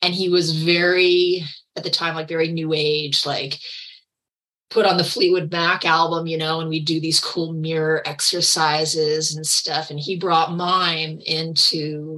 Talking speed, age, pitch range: 170 wpm, 30-49, 155-180 Hz